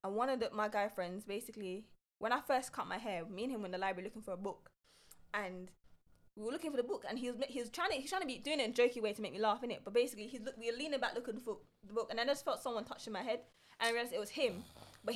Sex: female